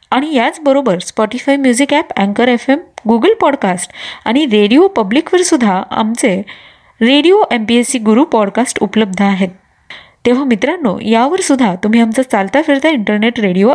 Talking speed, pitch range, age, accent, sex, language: 135 wpm, 215-285 Hz, 20-39, native, female, Marathi